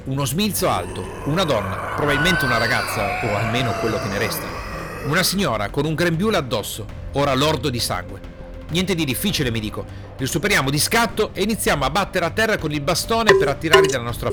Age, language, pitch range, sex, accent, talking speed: 40-59, Italian, 115-180 Hz, male, native, 195 wpm